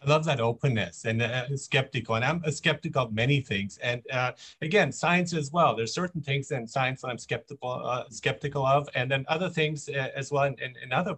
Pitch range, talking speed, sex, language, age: 120-160 Hz, 220 wpm, male, English, 40-59